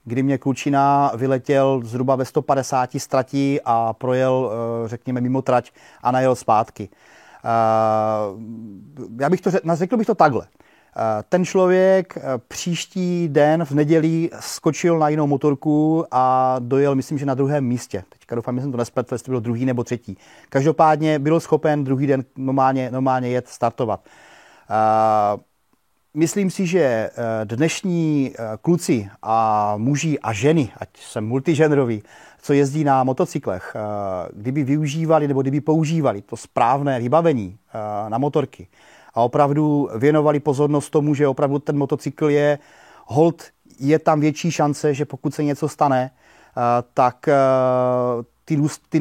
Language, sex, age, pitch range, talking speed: Czech, male, 30-49, 125-150 Hz, 140 wpm